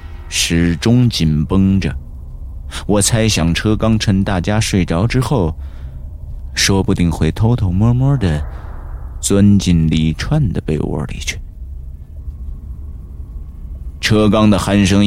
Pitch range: 75-95 Hz